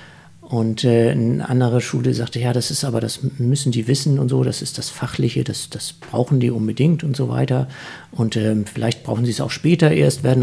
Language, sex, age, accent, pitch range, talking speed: German, male, 50-69, German, 115-140 Hz, 215 wpm